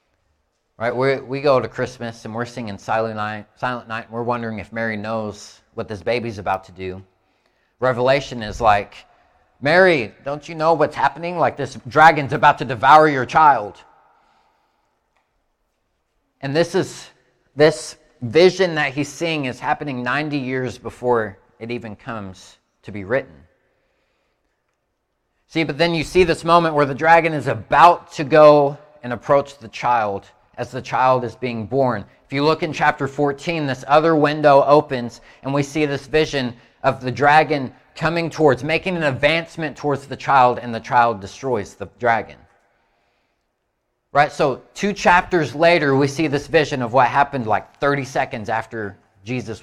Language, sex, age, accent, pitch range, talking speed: English, male, 30-49, American, 115-155 Hz, 160 wpm